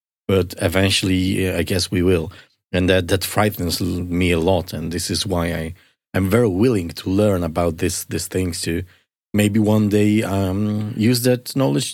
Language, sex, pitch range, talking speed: English, male, 95-110 Hz, 175 wpm